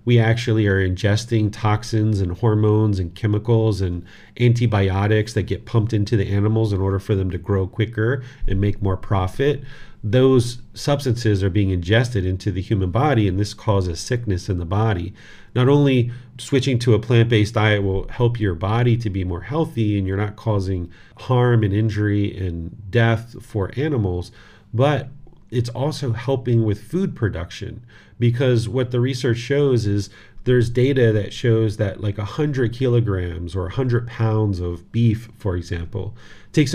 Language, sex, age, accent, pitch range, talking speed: English, male, 40-59, American, 100-120 Hz, 165 wpm